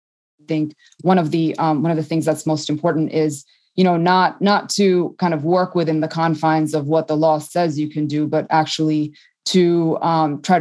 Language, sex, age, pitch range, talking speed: English, female, 20-39, 155-175 Hz, 215 wpm